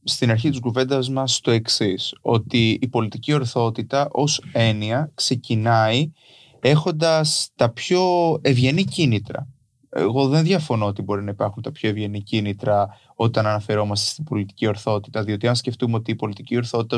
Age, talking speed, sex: 20-39, 150 wpm, male